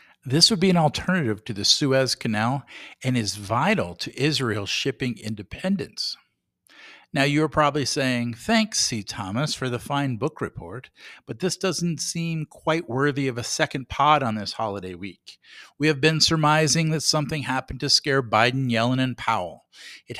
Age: 50-69